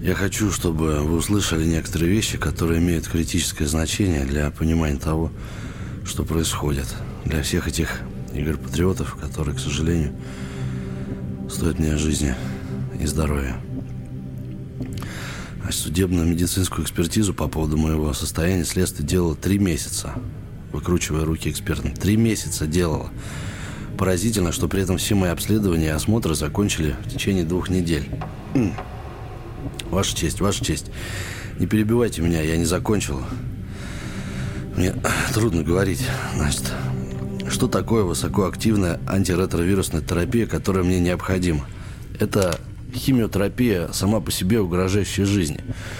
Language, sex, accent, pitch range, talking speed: Russian, male, native, 80-105 Hz, 115 wpm